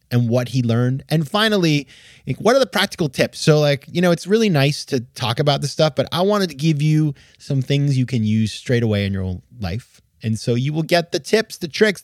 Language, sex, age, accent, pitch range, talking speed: English, male, 20-39, American, 115-160 Hz, 245 wpm